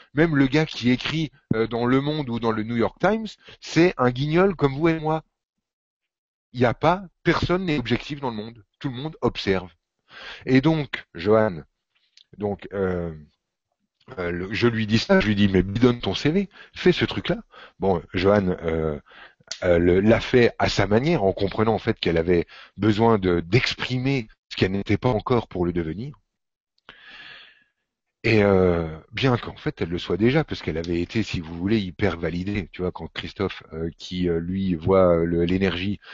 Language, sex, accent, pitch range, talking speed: French, male, French, 90-125 Hz, 185 wpm